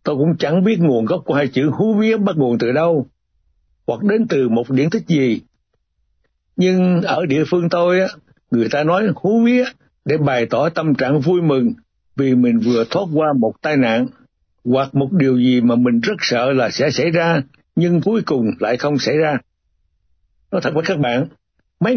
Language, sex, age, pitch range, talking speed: Vietnamese, male, 60-79, 130-180 Hz, 195 wpm